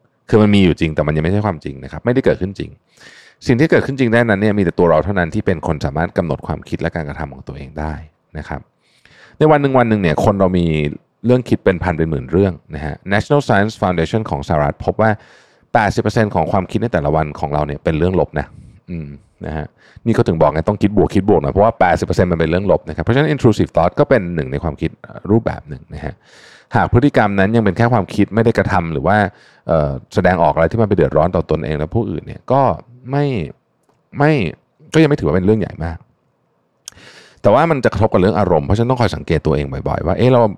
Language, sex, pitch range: Thai, male, 80-110 Hz